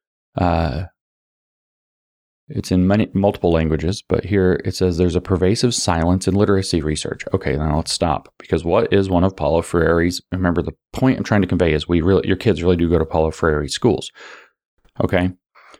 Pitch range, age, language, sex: 85-100 Hz, 30-49, English, male